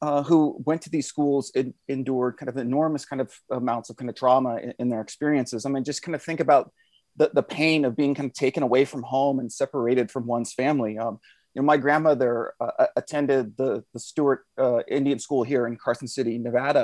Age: 30-49